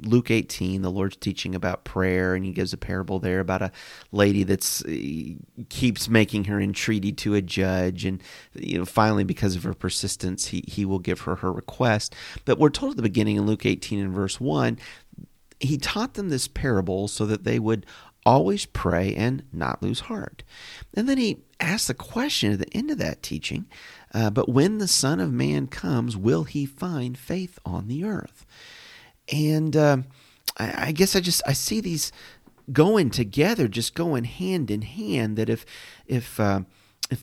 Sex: male